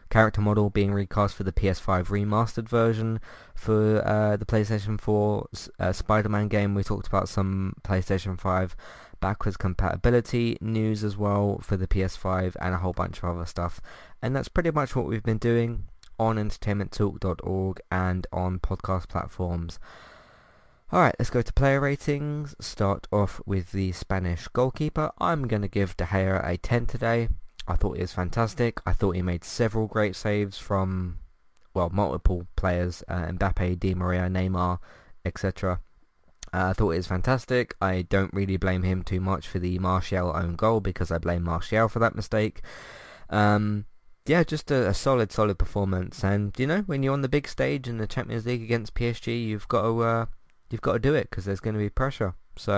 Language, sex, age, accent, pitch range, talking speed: English, male, 20-39, British, 90-115 Hz, 180 wpm